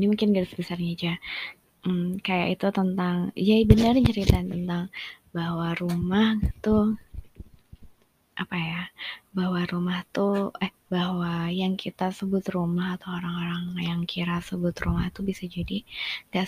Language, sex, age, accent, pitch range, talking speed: Indonesian, female, 20-39, native, 175-185 Hz, 135 wpm